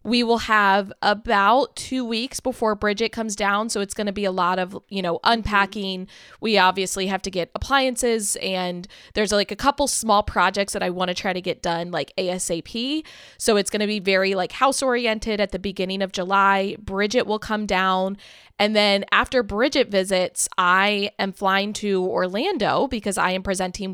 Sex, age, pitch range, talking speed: female, 20-39, 190-230 Hz, 190 wpm